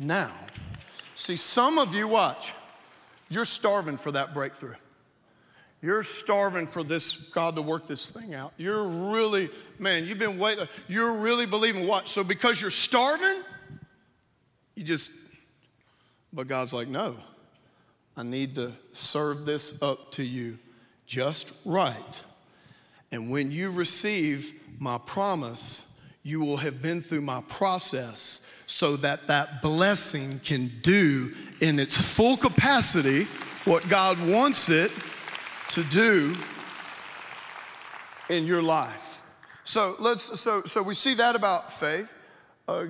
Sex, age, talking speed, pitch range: male, 40-59, 130 wpm, 150-220 Hz